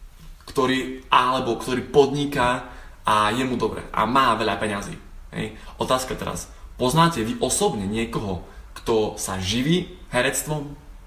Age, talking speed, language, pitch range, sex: 20-39, 125 wpm, Slovak, 110-145 Hz, male